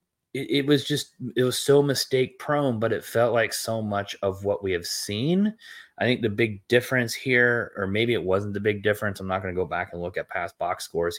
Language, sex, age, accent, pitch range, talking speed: English, male, 20-39, American, 95-110 Hz, 230 wpm